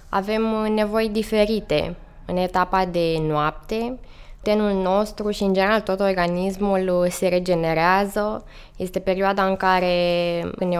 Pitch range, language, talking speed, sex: 175-205 Hz, Romanian, 120 wpm, female